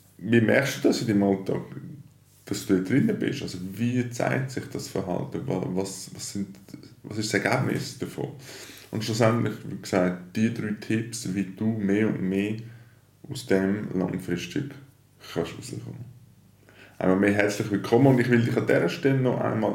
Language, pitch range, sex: German, 90-120 Hz, male